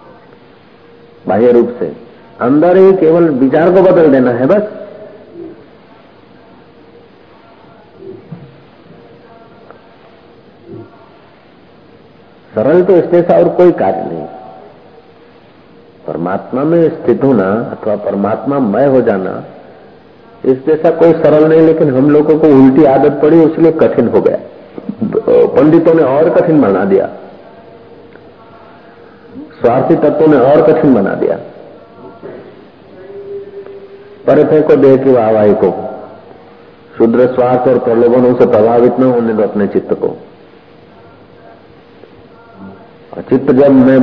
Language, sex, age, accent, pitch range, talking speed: Hindi, male, 50-69, native, 110-160 Hz, 105 wpm